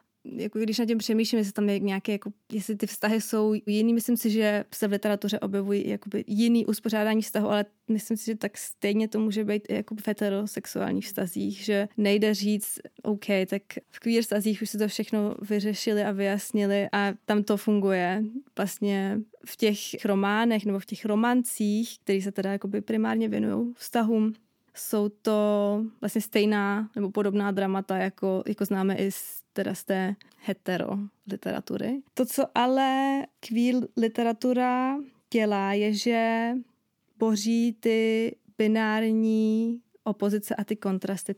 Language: Czech